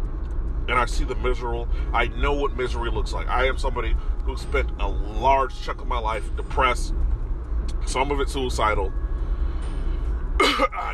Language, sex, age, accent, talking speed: English, male, 30-49, American, 155 wpm